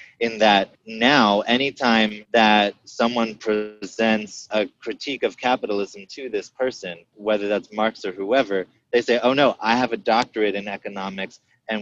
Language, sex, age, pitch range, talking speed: English, male, 20-39, 100-120 Hz, 150 wpm